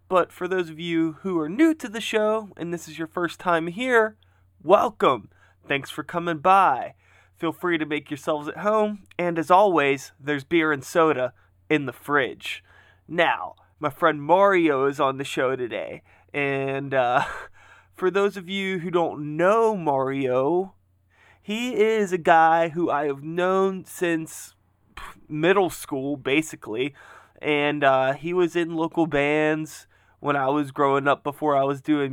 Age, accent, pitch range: 20-39, American, 135-170 Hz